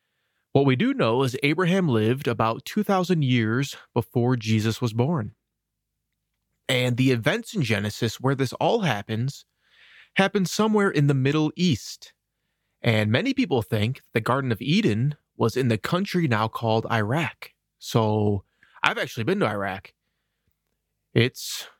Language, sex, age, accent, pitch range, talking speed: English, male, 30-49, American, 110-150 Hz, 140 wpm